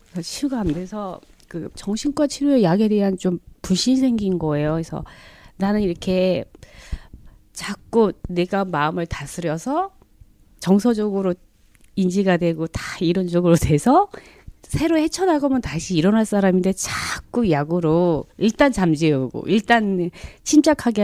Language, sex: Korean, female